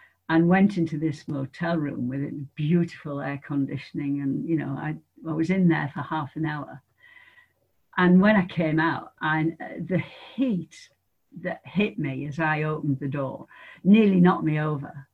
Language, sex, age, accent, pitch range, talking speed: English, female, 60-79, British, 150-180 Hz, 165 wpm